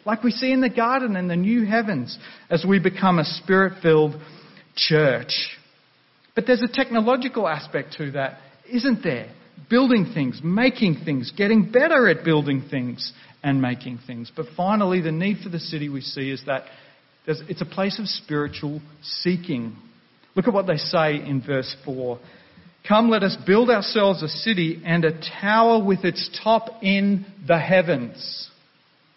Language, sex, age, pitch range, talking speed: English, male, 40-59, 160-220 Hz, 160 wpm